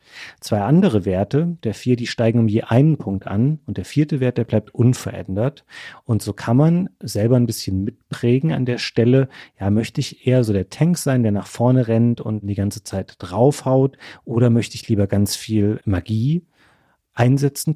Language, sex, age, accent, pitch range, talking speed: German, male, 40-59, German, 105-125 Hz, 185 wpm